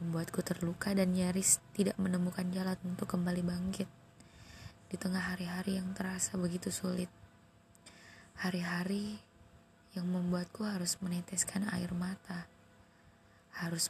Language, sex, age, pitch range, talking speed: Indonesian, female, 20-39, 165-195 Hz, 110 wpm